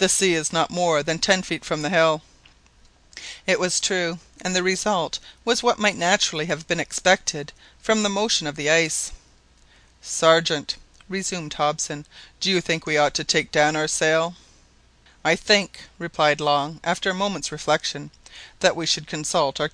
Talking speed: 170 wpm